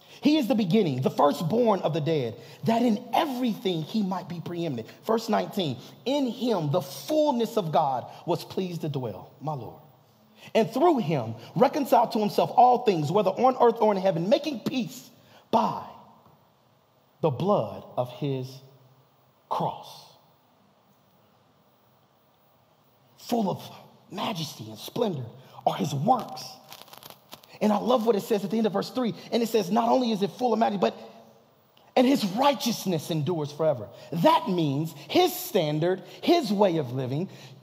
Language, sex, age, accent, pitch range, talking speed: English, male, 30-49, American, 155-235 Hz, 155 wpm